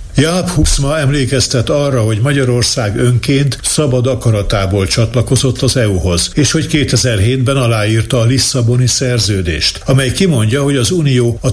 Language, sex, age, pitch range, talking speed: Hungarian, male, 60-79, 110-130 Hz, 130 wpm